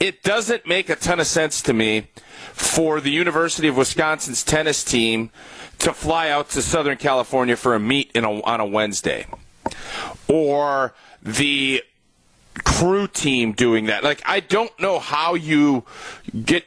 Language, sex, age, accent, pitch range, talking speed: English, male, 40-59, American, 145-195 Hz, 155 wpm